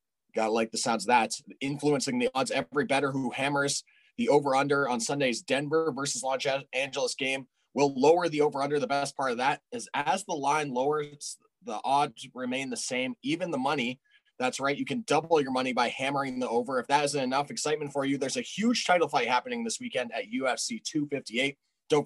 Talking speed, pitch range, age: 205 wpm, 130-160 Hz, 20-39